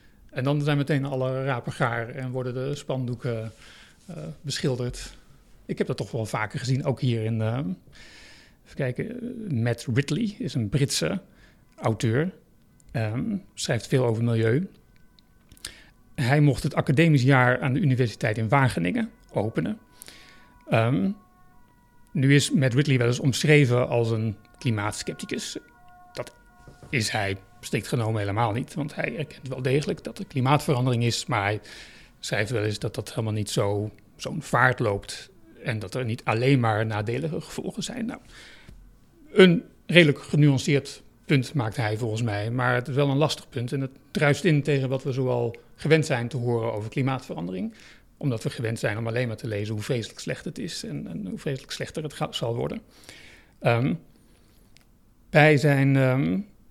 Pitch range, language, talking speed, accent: 115-145 Hz, Dutch, 160 wpm, Dutch